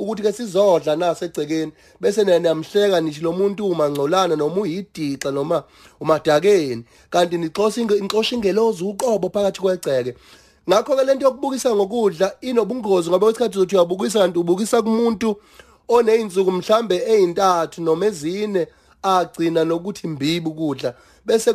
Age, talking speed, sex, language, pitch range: 30-49, 135 wpm, male, English, 165-220 Hz